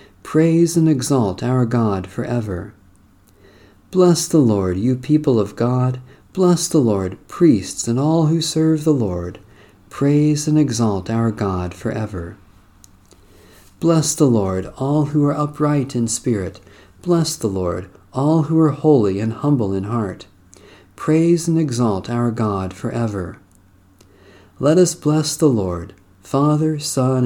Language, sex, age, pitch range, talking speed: English, male, 50-69, 95-150 Hz, 135 wpm